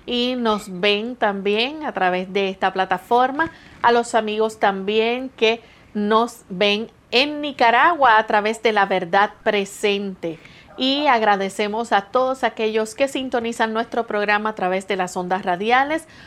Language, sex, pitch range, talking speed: English, female, 200-250 Hz, 145 wpm